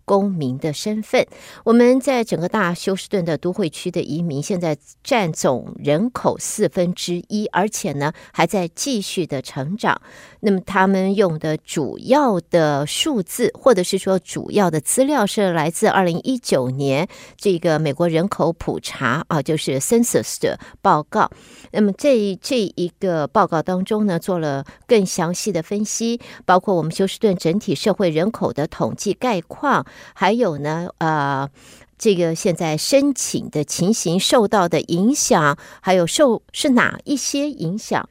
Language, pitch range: Chinese, 165-220 Hz